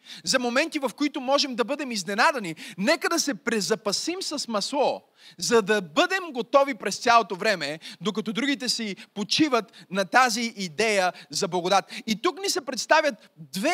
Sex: male